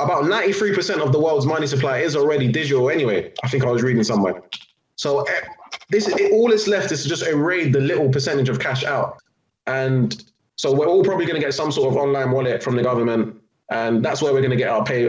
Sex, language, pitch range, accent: male, English, 125-155 Hz, British